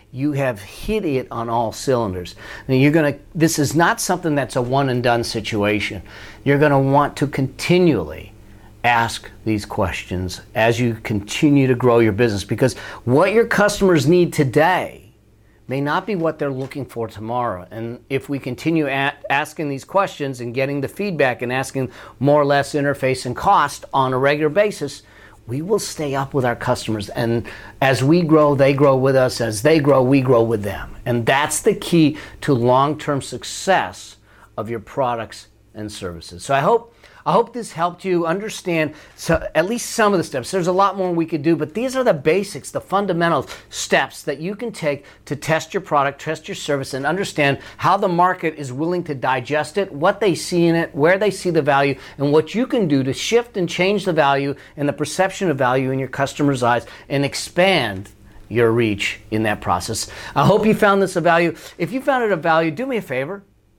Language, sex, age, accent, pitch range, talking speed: English, male, 40-59, American, 115-165 Hz, 200 wpm